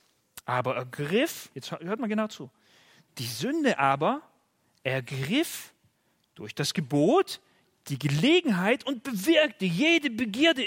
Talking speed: 110 wpm